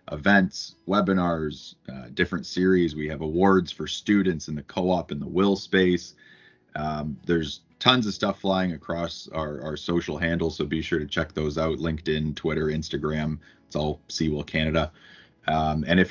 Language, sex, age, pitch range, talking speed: English, male, 30-49, 80-95 Hz, 170 wpm